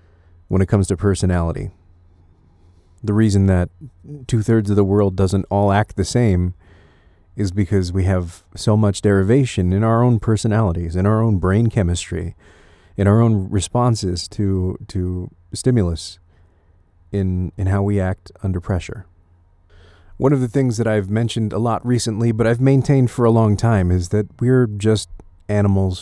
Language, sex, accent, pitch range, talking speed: English, male, American, 90-110 Hz, 160 wpm